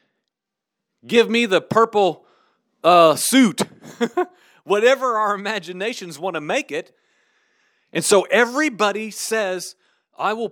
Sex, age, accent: male, 40-59, American